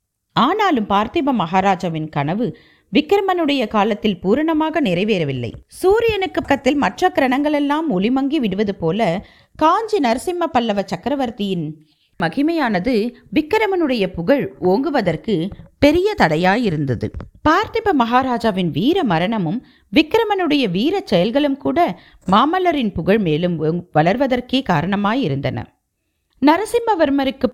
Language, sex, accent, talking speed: Tamil, female, native, 85 wpm